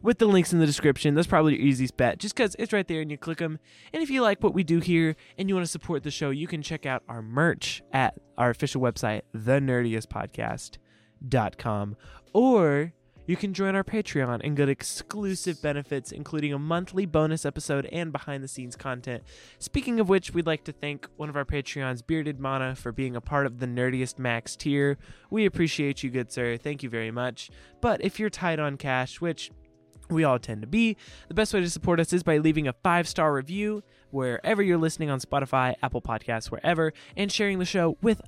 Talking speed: 205 wpm